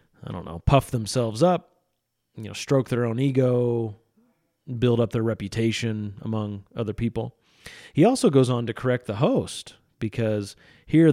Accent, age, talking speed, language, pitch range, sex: American, 30-49, 155 wpm, English, 110-130 Hz, male